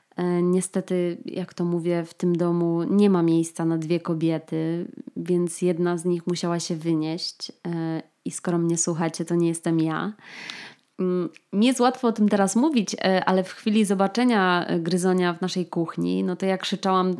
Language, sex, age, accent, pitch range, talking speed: Polish, female, 20-39, native, 170-190 Hz, 165 wpm